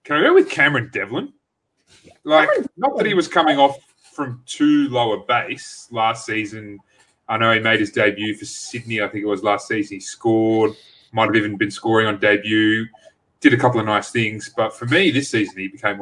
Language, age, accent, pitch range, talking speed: English, 30-49, Australian, 100-120 Hz, 205 wpm